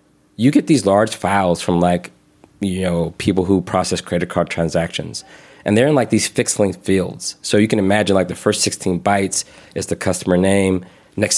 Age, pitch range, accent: 20-39, 95-115 Hz, American